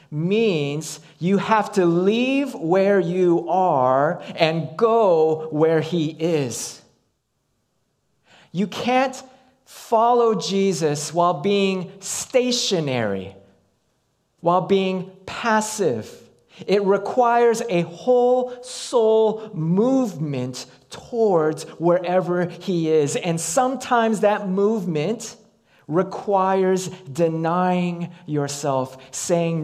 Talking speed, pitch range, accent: 85 wpm, 150-200 Hz, American